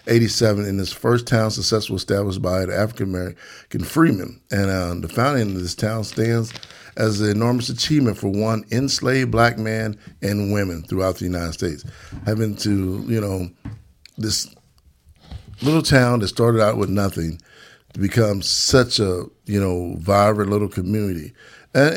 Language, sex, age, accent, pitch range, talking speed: English, male, 50-69, American, 100-120 Hz, 155 wpm